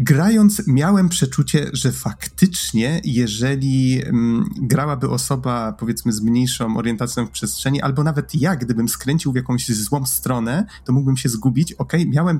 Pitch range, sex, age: 120-155 Hz, male, 30-49